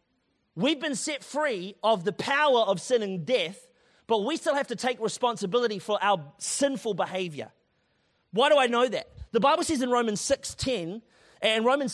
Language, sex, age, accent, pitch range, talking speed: English, male, 30-49, Australian, 200-265 Hz, 180 wpm